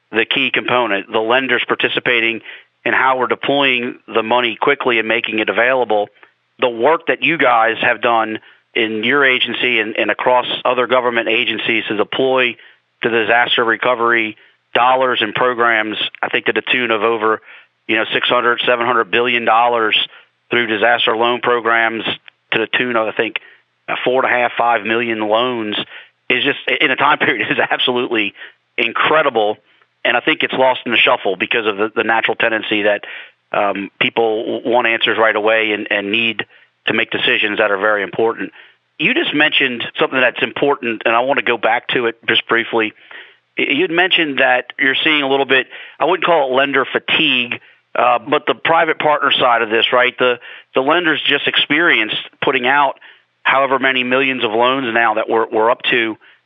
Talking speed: 185 wpm